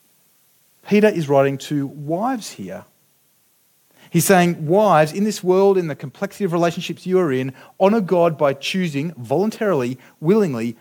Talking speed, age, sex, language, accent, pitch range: 145 wpm, 30-49, male, English, Australian, 140-195 Hz